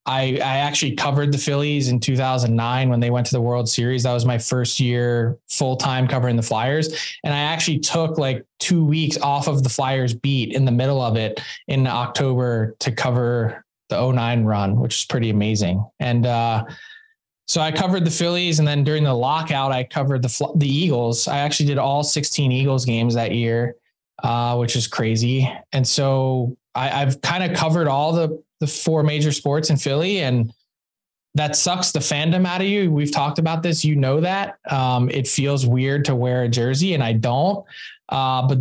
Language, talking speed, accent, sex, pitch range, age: English, 195 wpm, American, male, 125-150 Hz, 20-39